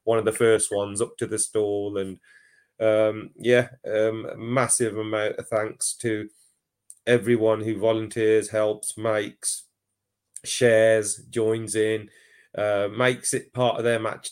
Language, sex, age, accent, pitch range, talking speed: English, male, 30-49, British, 100-140 Hz, 140 wpm